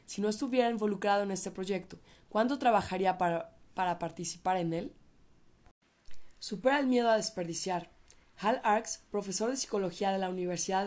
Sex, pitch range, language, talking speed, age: female, 180-210 Hz, Spanish, 150 wpm, 20-39